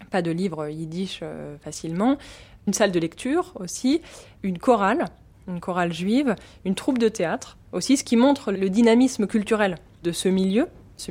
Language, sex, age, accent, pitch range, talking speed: French, female, 20-39, French, 175-225 Hz, 160 wpm